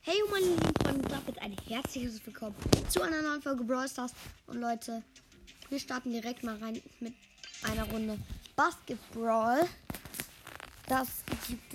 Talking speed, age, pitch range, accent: 145 wpm, 20-39, 215-255 Hz, German